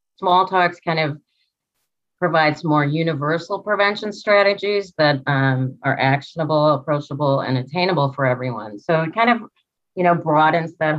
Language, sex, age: English, female, 30-49